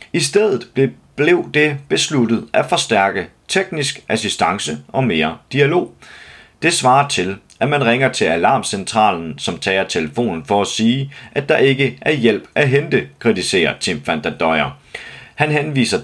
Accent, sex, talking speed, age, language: native, male, 140 wpm, 30-49, Danish